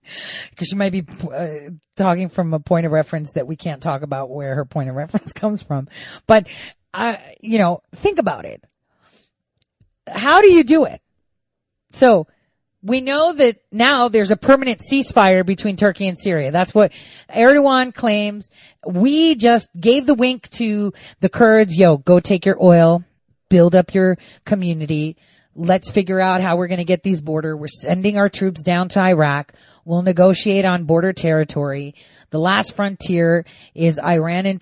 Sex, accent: female, American